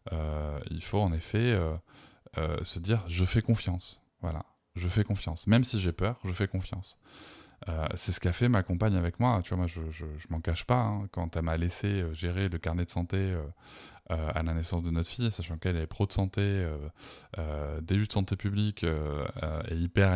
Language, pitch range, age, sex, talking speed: French, 85-105 Hz, 20-39, male, 215 wpm